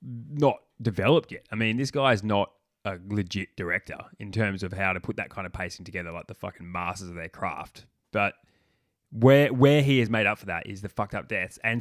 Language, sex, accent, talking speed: English, male, Australian, 230 wpm